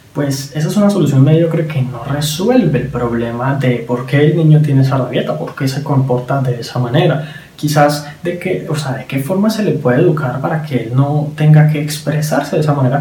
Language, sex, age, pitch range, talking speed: Spanish, male, 20-39, 130-160 Hz, 220 wpm